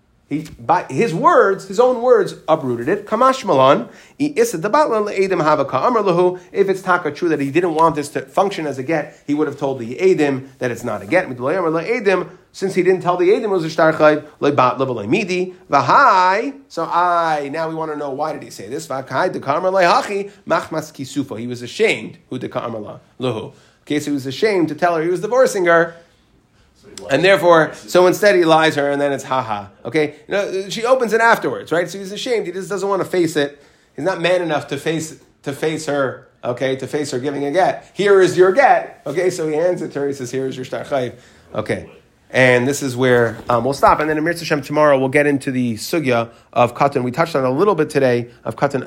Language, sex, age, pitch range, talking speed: English, male, 30-49, 125-180 Hz, 200 wpm